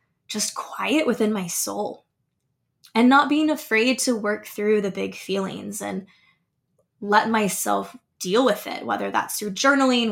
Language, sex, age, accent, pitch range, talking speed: English, female, 20-39, American, 195-240 Hz, 150 wpm